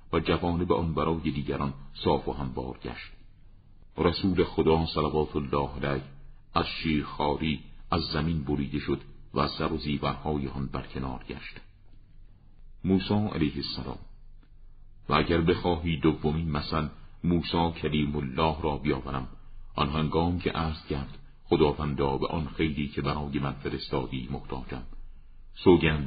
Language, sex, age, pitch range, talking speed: Persian, male, 50-69, 70-85 Hz, 140 wpm